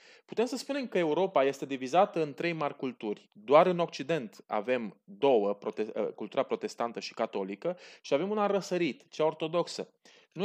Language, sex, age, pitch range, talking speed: Romanian, male, 30-49, 135-180 Hz, 155 wpm